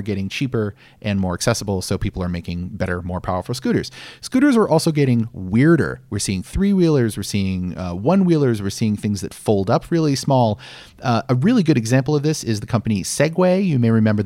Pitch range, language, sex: 105-145 Hz, English, male